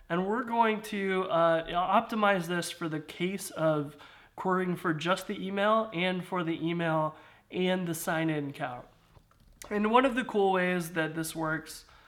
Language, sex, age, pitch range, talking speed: English, male, 30-49, 160-190 Hz, 165 wpm